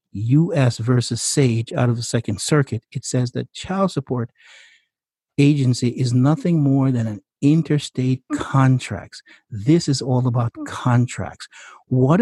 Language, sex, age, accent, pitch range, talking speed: English, male, 60-79, American, 120-150 Hz, 135 wpm